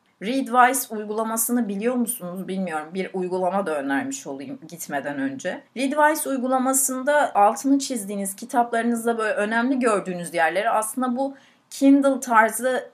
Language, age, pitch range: Turkish, 30-49, 200-265 Hz